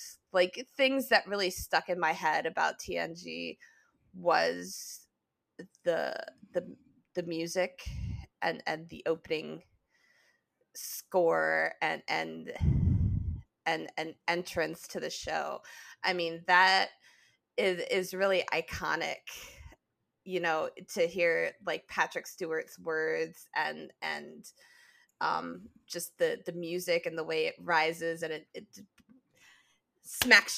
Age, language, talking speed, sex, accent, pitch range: 20-39, English, 115 wpm, female, American, 160-225 Hz